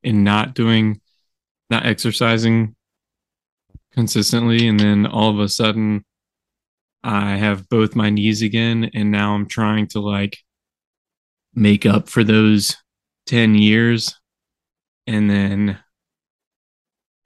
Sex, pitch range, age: male, 105-115 Hz, 20-39